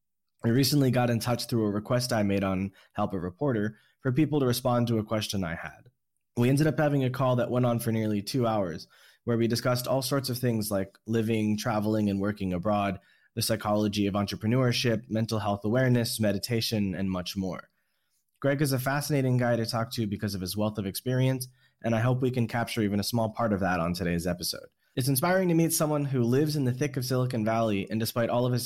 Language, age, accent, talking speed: English, 20-39, American, 225 wpm